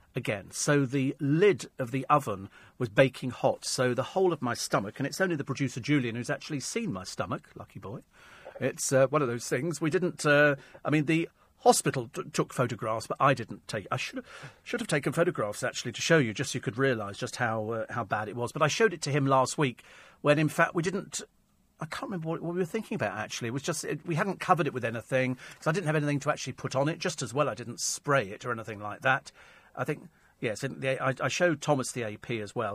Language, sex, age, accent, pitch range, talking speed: English, male, 40-59, British, 125-160 Hz, 245 wpm